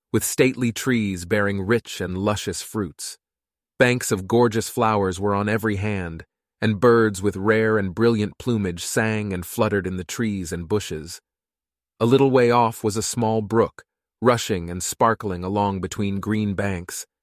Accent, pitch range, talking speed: American, 95-115 Hz, 160 wpm